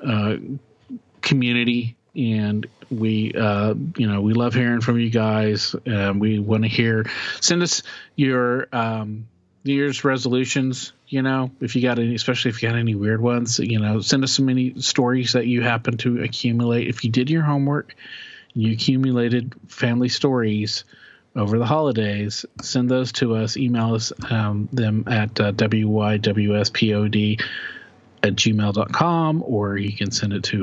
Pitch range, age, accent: 105-130 Hz, 40-59, American